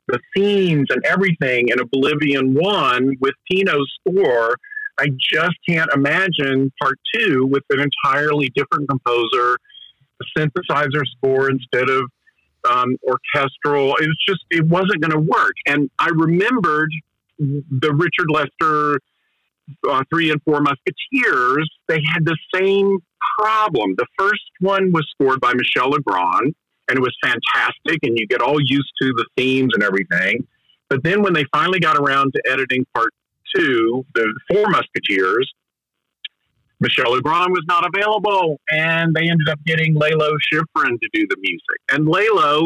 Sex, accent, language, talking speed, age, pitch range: male, American, English, 150 wpm, 50-69, 140-190 Hz